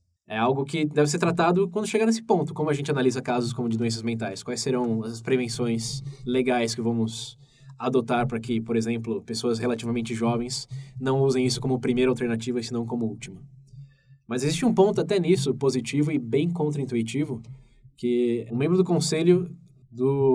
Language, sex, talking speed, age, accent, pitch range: Portuguese, male, 175 wpm, 10-29, Brazilian, 120-145 Hz